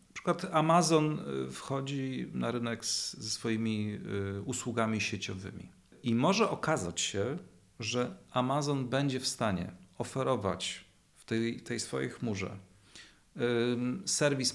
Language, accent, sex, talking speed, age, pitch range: Polish, native, male, 110 wpm, 40-59, 105-135 Hz